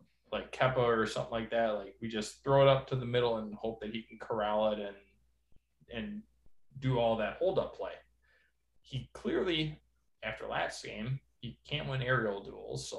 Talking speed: 185 wpm